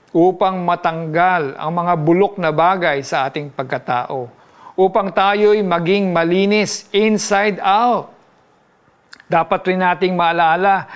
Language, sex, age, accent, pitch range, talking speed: Filipino, male, 50-69, native, 150-190 Hz, 110 wpm